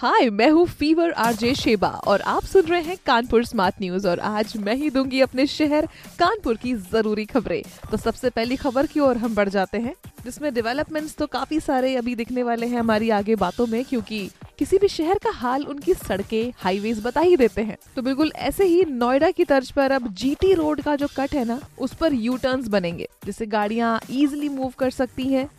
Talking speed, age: 210 wpm, 20-39